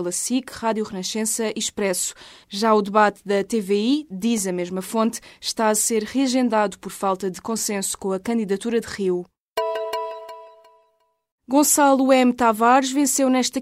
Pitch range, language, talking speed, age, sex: 205-235 Hz, Portuguese, 140 wpm, 20-39, female